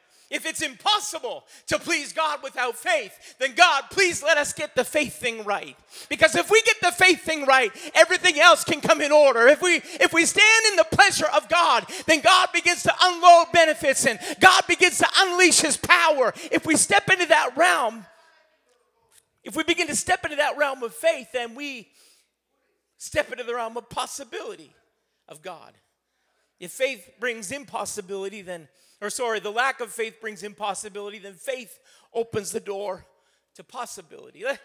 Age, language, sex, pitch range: 40-59, English, male, 225-320 Hz